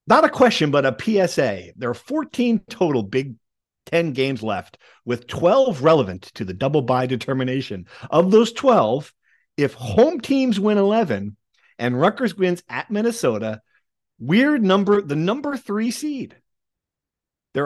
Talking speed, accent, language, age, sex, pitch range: 145 wpm, American, English, 50-69, male, 115-180 Hz